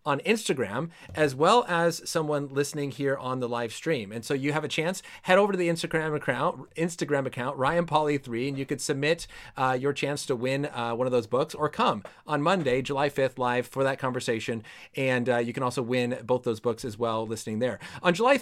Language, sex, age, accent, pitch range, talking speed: English, male, 30-49, American, 135-165 Hz, 220 wpm